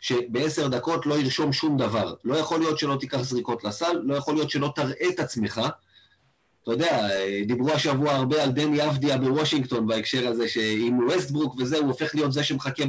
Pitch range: 120-155 Hz